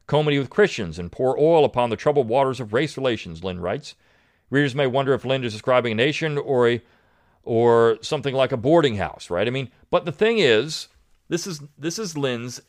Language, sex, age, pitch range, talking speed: English, male, 40-59, 110-155 Hz, 210 wpm